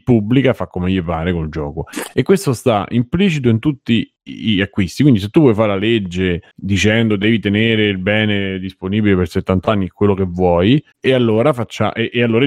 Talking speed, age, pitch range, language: 180 wpm, 30-49, 95-120 Hz, Italian